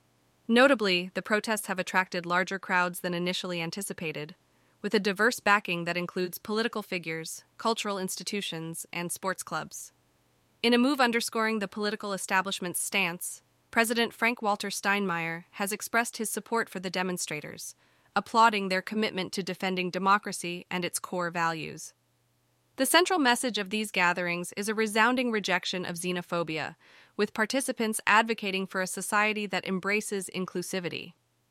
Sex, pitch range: female, 180-220 Hz